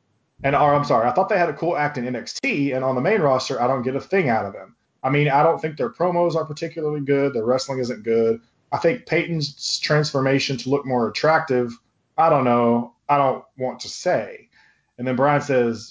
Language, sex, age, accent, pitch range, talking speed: English, male, 30-49, American, 120-145 Hz, 225 wpm